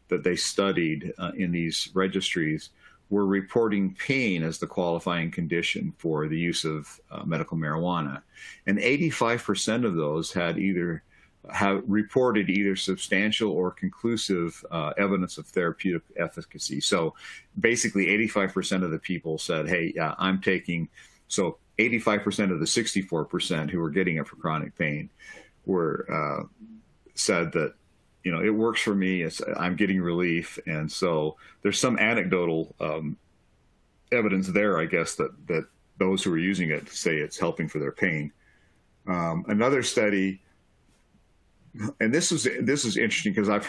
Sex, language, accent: male, English, American